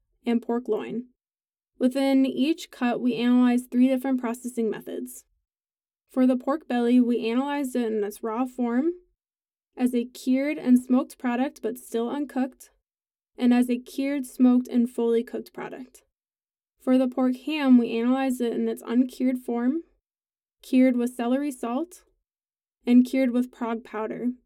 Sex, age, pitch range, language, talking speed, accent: female, 10-29, 235-270 Hz, English, 150 wpm, American